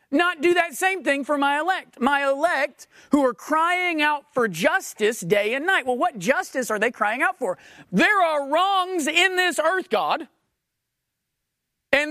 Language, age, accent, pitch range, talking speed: English, 40-59, American, 220-335 Hz, 175 wpm